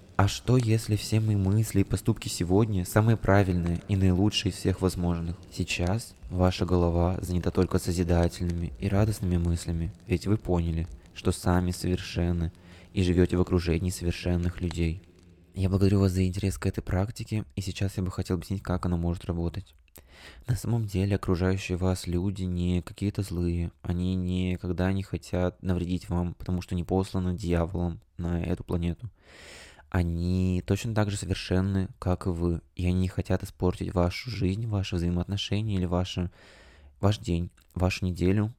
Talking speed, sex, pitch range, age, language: 155 wpm, male, 85-95 Hz, 20-39, Russian